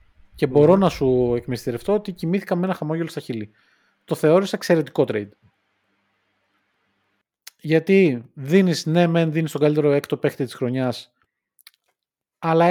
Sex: male